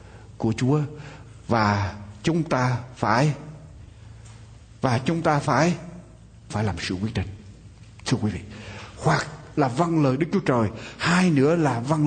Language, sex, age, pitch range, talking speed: Vietnamese, male, 60-79, 110-135 Hz, 145 wpm